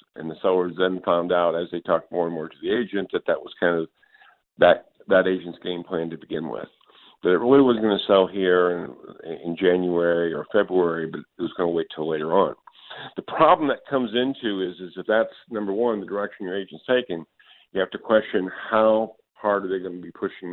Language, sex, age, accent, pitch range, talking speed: English, male, 50-69, American, 85-105 Hz, 230 wpm